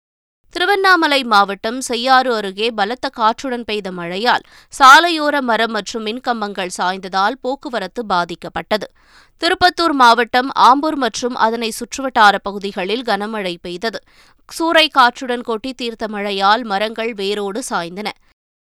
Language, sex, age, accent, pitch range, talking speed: Tamil, female, 20-39, native, 205-265 Hz, 100 wpm